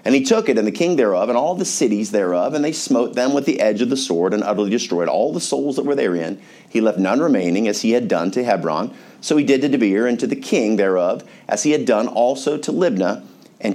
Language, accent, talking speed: English, American, 260 wpm